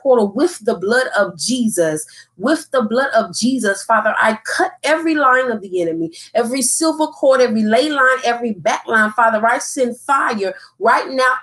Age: 30-49